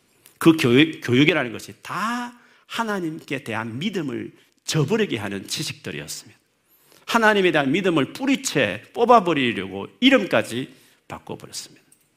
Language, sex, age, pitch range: Korean, male, 40-59, 115-160 Hz